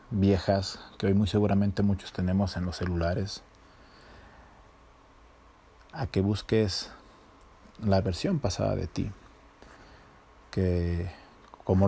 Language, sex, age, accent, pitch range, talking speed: Spanish, male, 30-49, Mexican, 90-105 Hz, 100 wpm